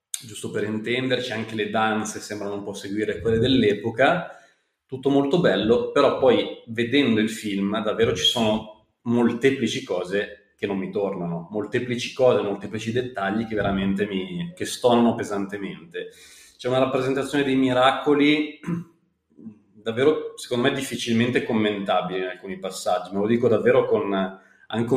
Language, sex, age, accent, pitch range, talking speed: Italian, male, 30-49, native, 110-135 Hz, 135 wpm